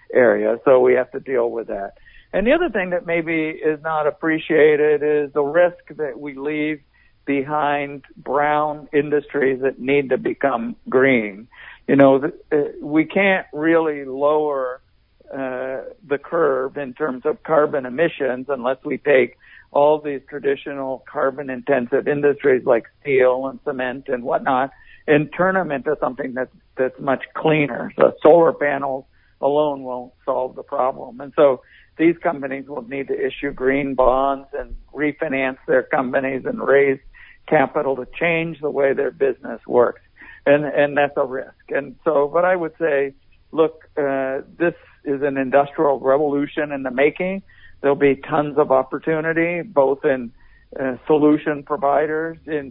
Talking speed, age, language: 150 wpm, 60-79, English